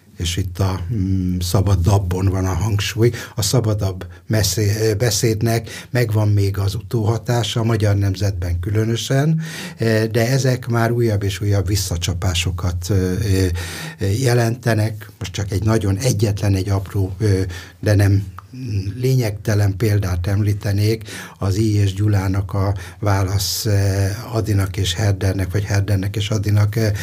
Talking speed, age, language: 115 wpm, 60-79, Hungarian